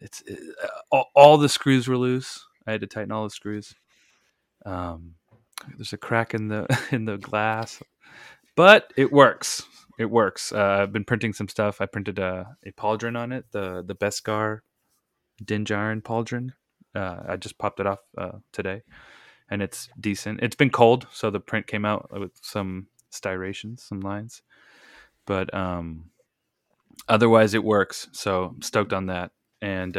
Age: 20-39